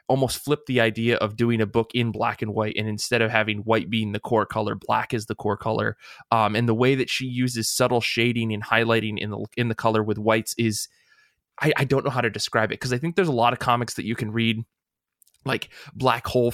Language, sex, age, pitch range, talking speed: English, male, 20-39, 110-125 Hz, 245 wpm